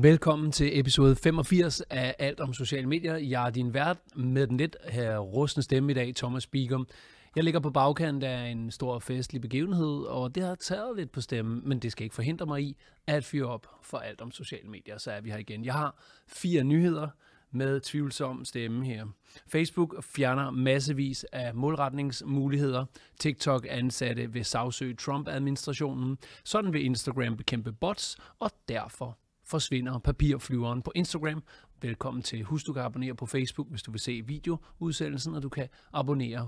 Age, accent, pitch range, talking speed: 30-49, native, 120-145 Hz, 170 wpm